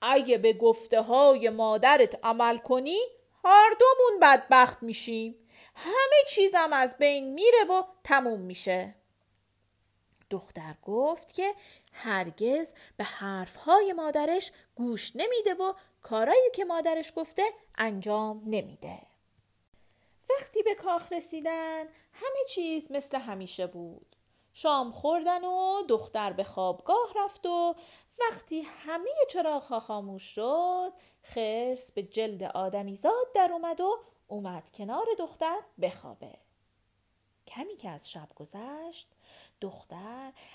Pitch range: 210-355 Hz